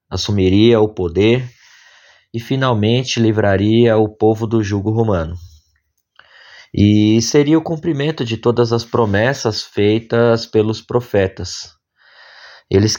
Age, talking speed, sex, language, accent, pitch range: 20-39, 105 wpm, male, Portuguese, Brazilian, 95-125 Hz